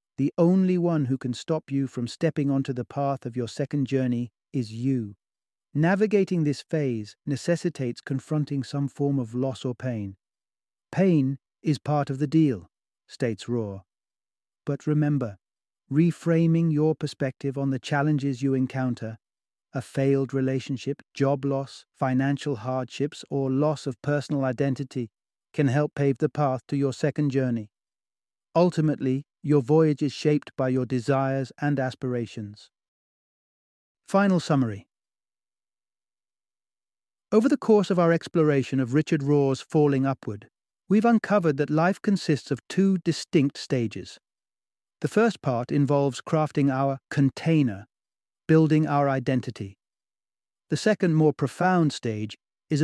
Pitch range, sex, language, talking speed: 125-155 Hz, male, English, 130 wpm